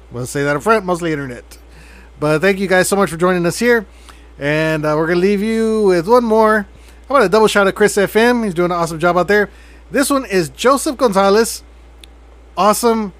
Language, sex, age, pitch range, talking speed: English, male, 30-49, 150-195 Hz, 225 wpm